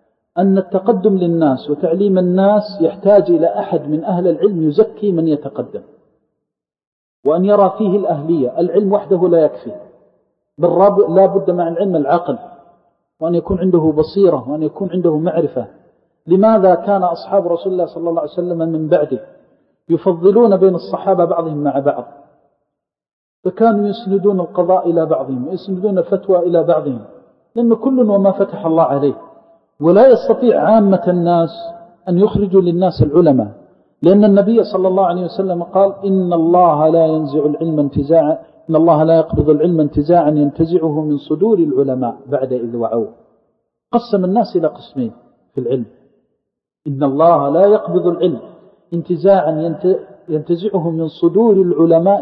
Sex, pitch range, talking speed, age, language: male, 160-195 Hz, 135 wpm, 50-69, Arabic